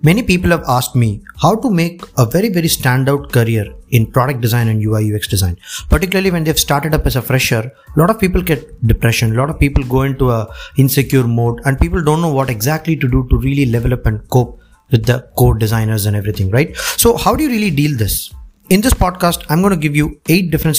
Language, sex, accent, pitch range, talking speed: English, male, Indian, 120-165 Hz, 230 wpm